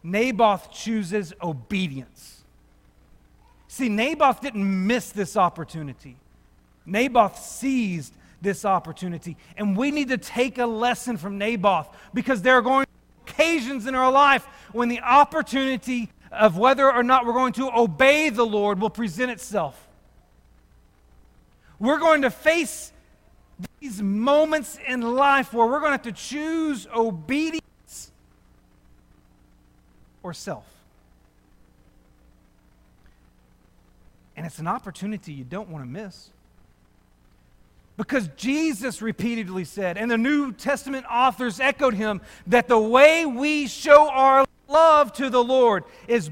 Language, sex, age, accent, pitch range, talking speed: English, male, 40-59, American, 170-260 Hz, 125 wpm